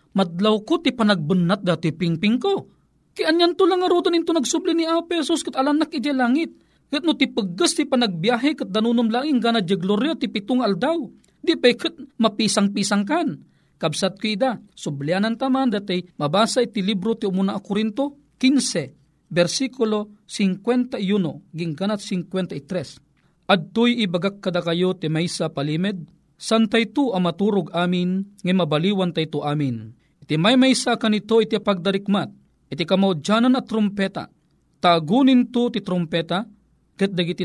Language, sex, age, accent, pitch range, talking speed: Filipino, male, 40-59, native, 175-245 Hz, 150 wpm